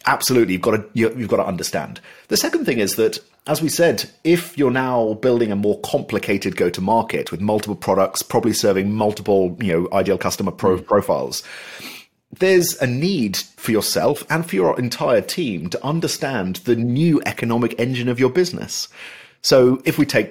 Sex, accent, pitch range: male, British, 115-170 Hz